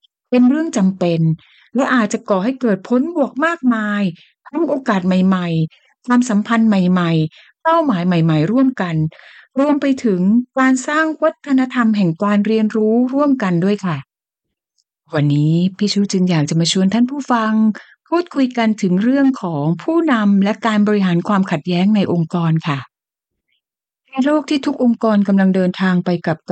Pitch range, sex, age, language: 180-260 Hz, female, 60-79, Thai